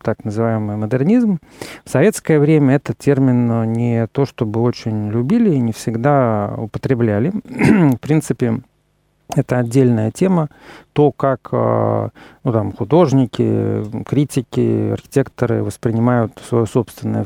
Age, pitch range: 40-59, 115-140 Hz